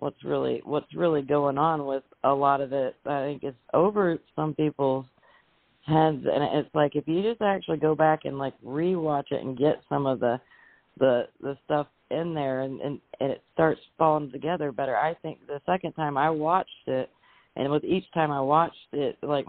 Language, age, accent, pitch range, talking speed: English, 30-49, American, 135-155 Hz, 200 wpm